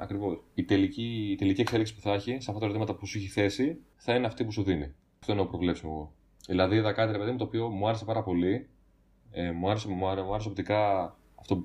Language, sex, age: Greek, male, 20-39